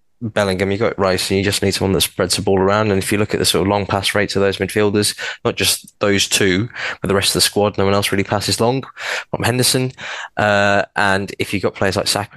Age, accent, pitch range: 20-39, British, 95-110 Hz